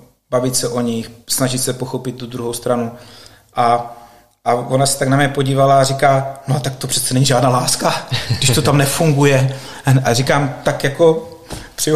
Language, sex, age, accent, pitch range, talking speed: Czech, male, 30-49, native, 120-135 Hz, 180 wpm